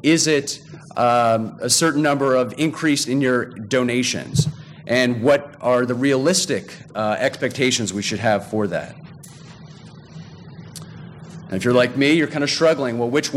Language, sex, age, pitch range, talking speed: English, male, 40-59, 120-155 Hz, 155 wpm